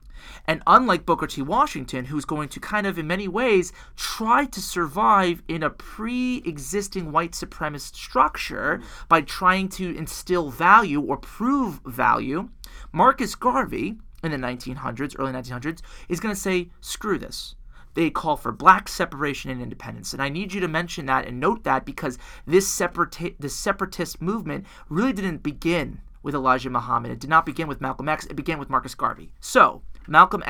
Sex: male